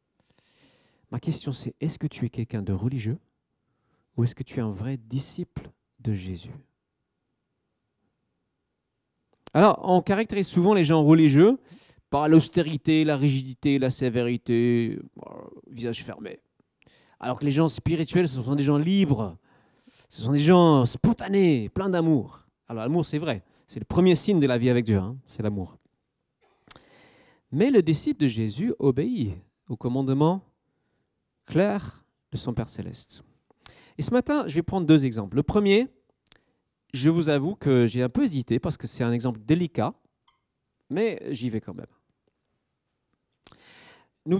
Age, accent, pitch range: 40-59, French, 125-170 Hz